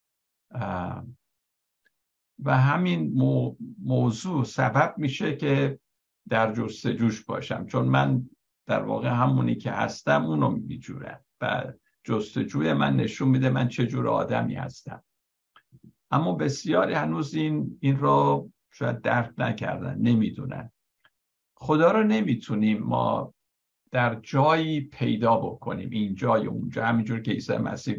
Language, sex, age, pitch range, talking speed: Persian, male, 60-79, 110-135 Hz, 115 wpm